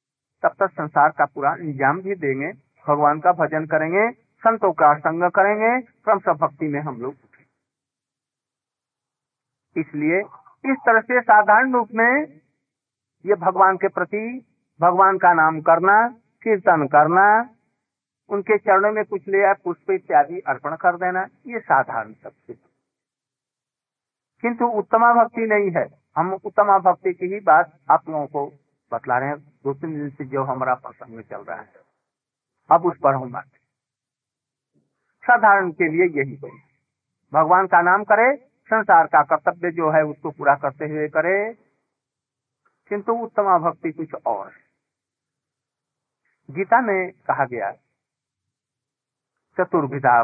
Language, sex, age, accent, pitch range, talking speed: Hindi, male, 50-69, native, 140-205 Hz, 135 wpm